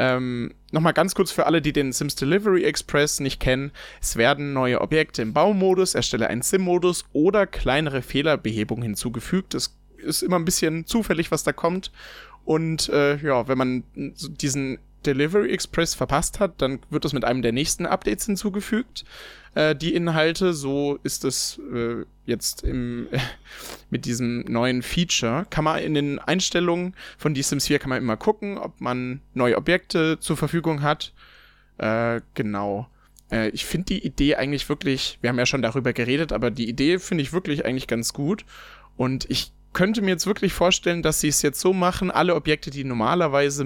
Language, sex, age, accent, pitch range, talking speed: German, male, 20-39, German, 130-175 Hz, 175 wpm